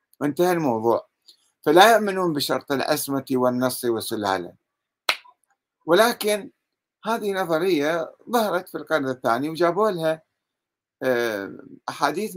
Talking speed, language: 85 wpm, Arabic